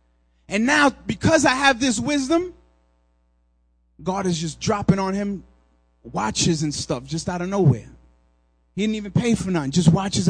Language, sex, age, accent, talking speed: English, male, 30-49, American, 165 wpm